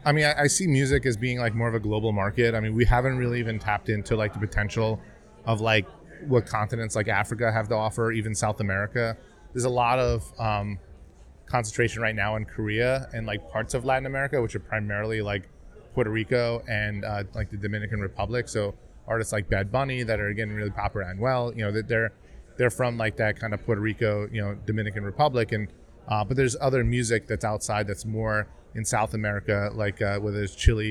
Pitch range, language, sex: 105-120 Hz, English, male